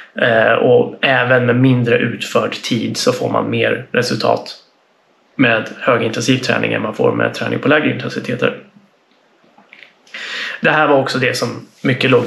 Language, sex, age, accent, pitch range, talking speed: Swedish, male, 20-39, native, 115-135 Hz, 145 wpm